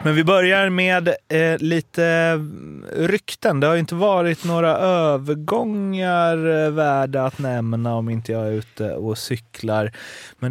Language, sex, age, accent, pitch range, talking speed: Swedish, male, 30-49, native, 115-150 Hz, 145 wpm